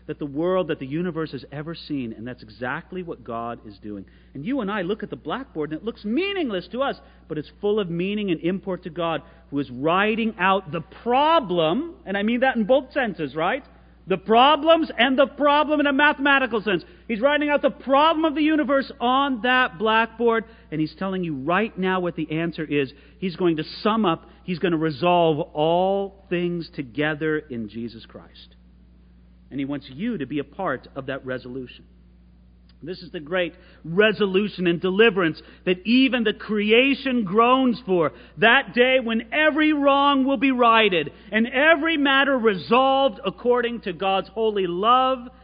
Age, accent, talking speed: 40-59, American, 185 wpm